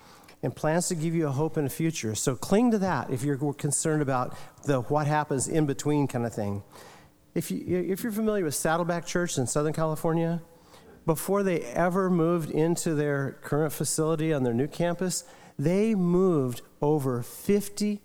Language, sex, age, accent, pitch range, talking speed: English, male, 40-59, American, 125-170 Hz, 175 wpm